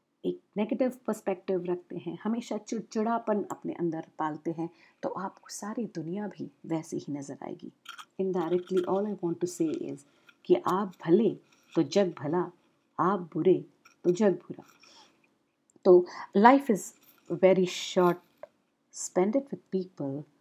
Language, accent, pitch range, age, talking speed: Hindi, native, 170-210 Hz, 50-69, 135 wpm